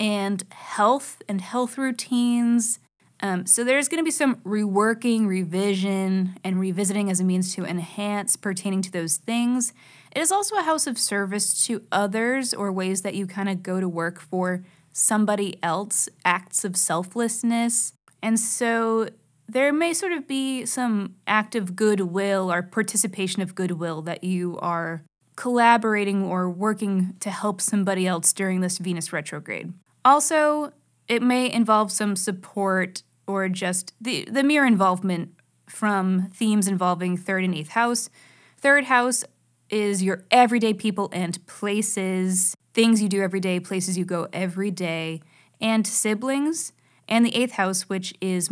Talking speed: 150 wpm